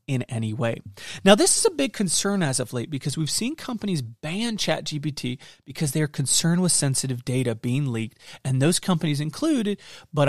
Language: English